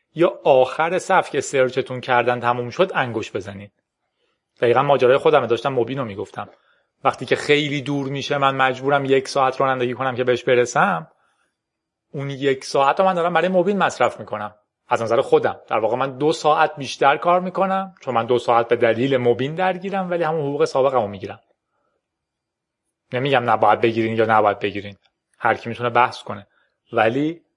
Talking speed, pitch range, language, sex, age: 170 wpm, 115-160 Hz, Persian, male, 30-49